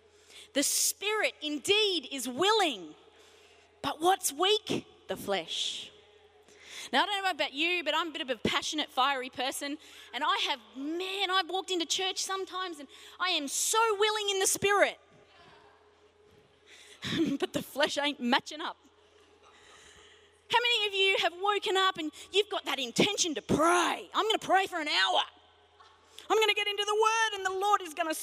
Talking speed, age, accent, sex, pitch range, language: 175 wpm, 20-39, Australian, female, 280-415 Hz, English